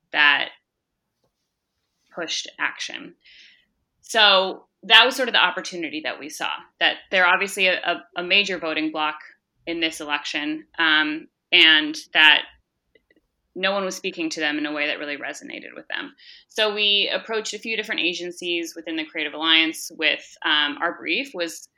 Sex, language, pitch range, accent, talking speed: female, English, 155-210 Hz, American, 155 wpm